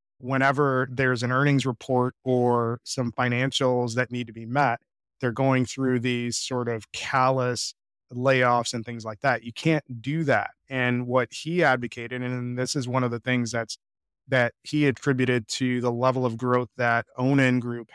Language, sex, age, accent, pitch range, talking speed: English, male, 20-39, American, 120-135 Hz, 175 wpm